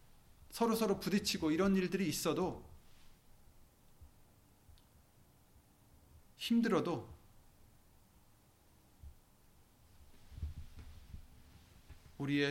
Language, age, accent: Korean, 30-49, native